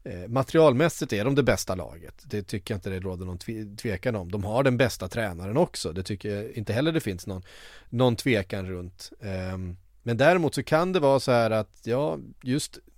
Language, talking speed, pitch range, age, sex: Swedish, 200 wpm, 100-125 Hz, 30-49, male